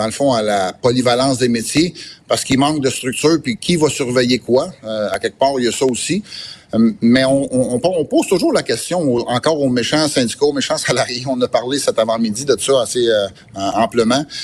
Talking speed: 230 wpm